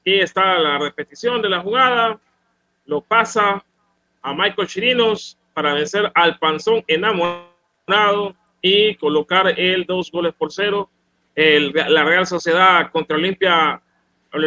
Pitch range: 160-200 Hz